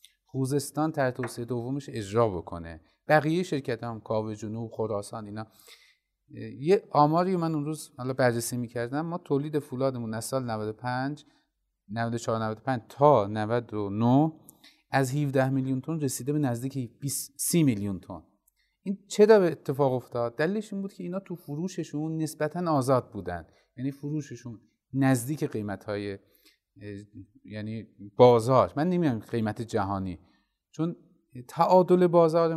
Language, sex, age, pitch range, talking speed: Persian, male, 30-49, 115-165 Hz, 140 wpm